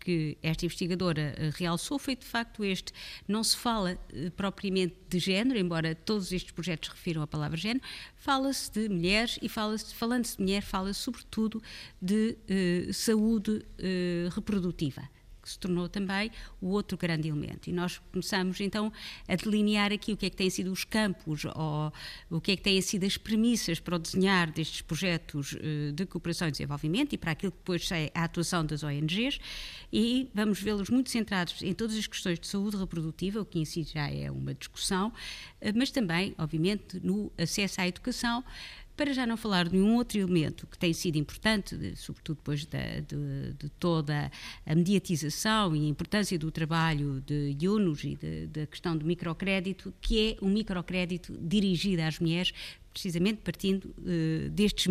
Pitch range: 165-210 Hz